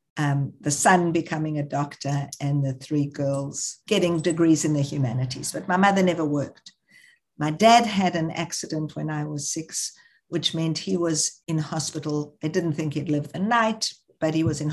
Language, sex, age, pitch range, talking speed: English, female, 60-79, 145-190 Hz, 185 wpm